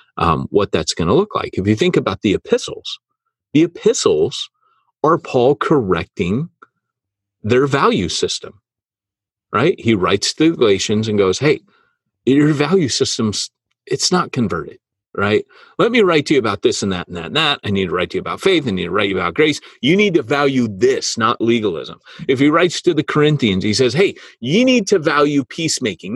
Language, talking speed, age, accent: English, 195 wpm, 40-59, American